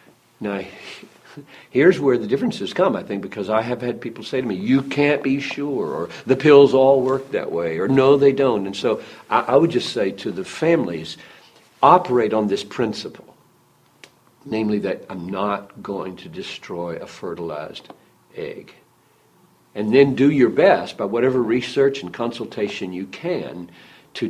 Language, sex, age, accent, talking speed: English, male, 60-79, American, 170 wpm